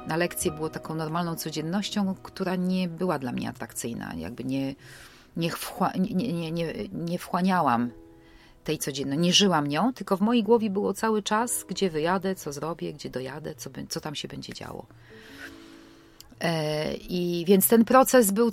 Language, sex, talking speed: Polish, female, 145 wpm